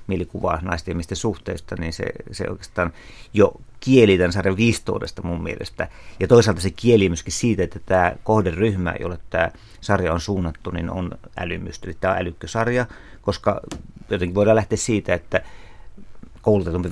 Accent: native